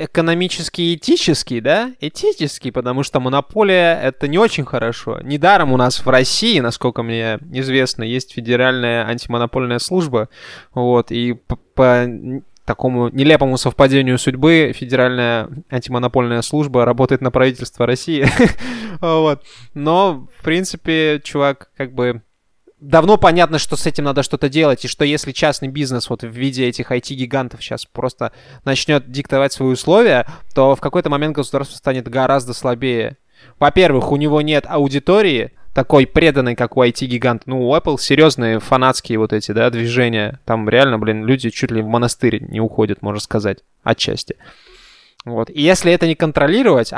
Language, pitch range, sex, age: Russian, 120-150 Hz, male, 20-39